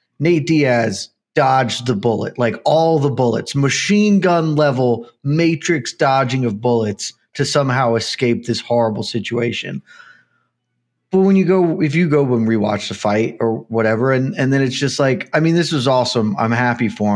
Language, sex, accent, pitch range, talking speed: English, male, American, 110-145 Hz, 170 wpm